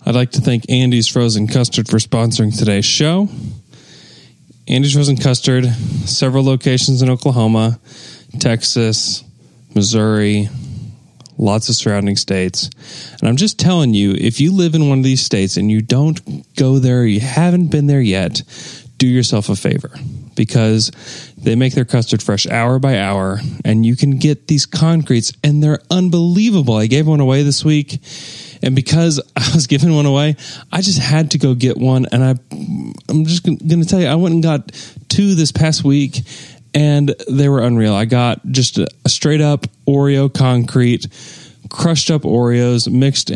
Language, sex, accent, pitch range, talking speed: English, male, American, 115-145 Hz, 170 wpm